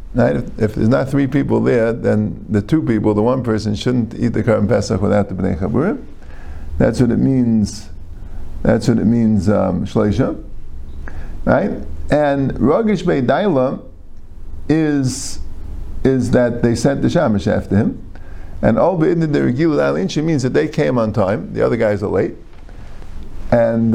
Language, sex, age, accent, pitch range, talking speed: English, male, 50-69, American, 100-140 Hz, 155 wpm